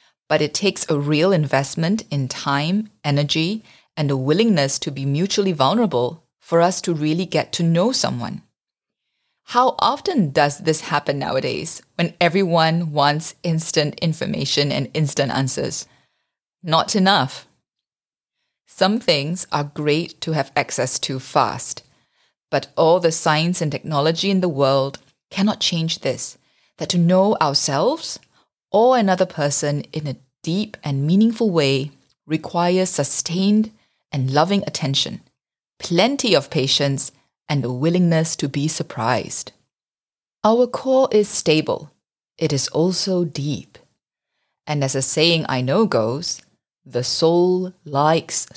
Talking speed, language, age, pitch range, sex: 130 wpm, English, 30-49, 140-185 Hz, female